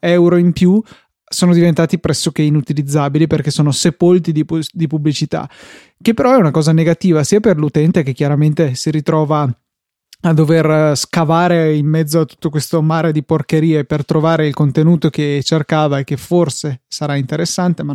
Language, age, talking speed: Italian, 20-39, 160 wpm